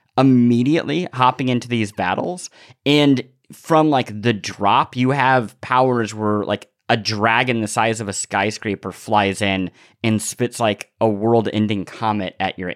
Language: English